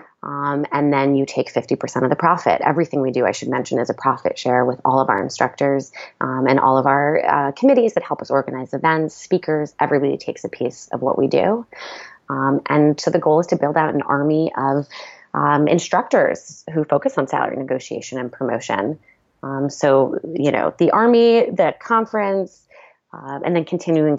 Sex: female